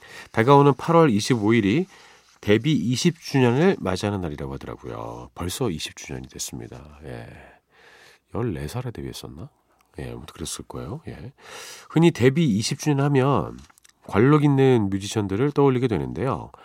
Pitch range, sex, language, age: 90-135 Hz, male, Korean, 40-59